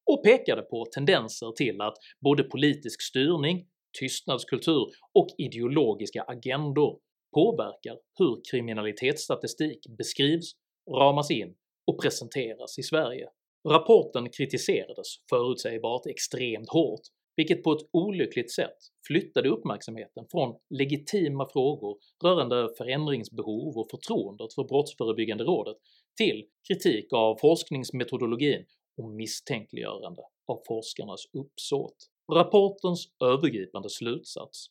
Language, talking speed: Swedish, 100 wpm